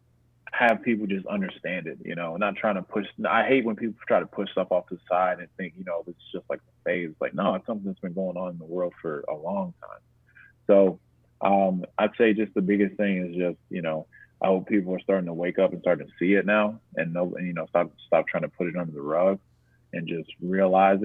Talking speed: 250 wpm